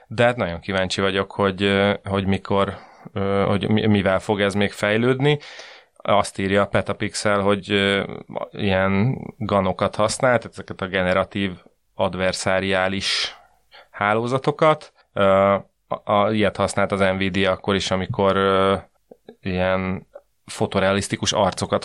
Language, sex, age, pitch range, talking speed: Hungarian, male, 30-49, 95-110 Hz, 100 wpm